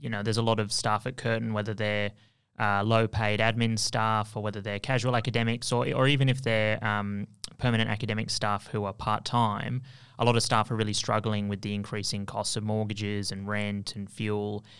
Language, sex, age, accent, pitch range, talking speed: English, male, 20-39, Australian, 105-120 Hz, 205 wpm